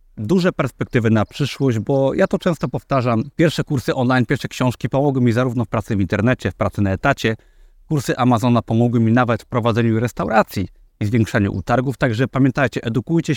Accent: native